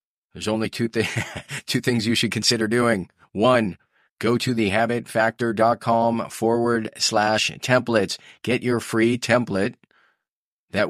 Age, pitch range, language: 40-59, 100-120 Hz, English